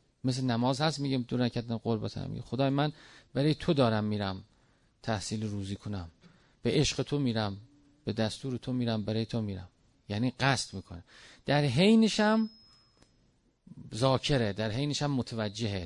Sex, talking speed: male, 150 wpm